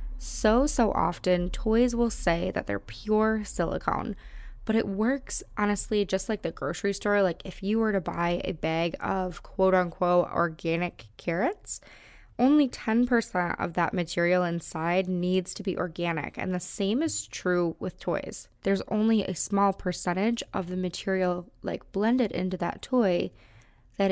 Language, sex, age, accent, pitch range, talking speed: English, female, 20-39, American, 180-225 Hz, 155 wpm